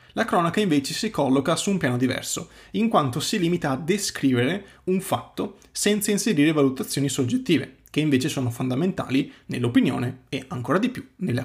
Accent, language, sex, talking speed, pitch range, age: native, Italian, male, 160 wpm, 130-165 Hz, 30-49